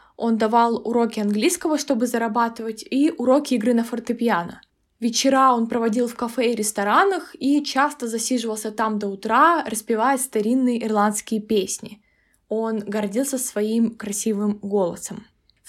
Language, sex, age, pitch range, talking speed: Russian, female, 20-39, 220-265 Hz, 130 wpm